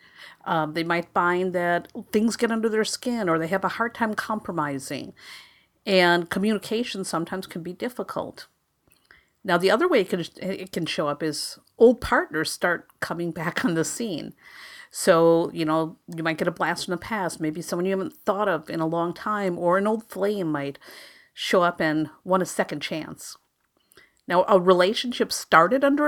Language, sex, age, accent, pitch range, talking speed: English, female, 50-69, American, 165-230 Hz, 185 wpm